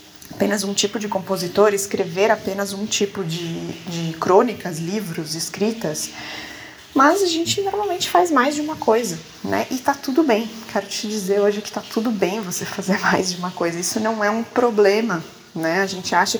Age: 20-39